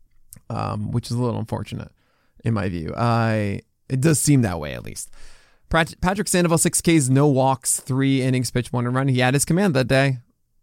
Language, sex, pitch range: English, male, 115-150 Hz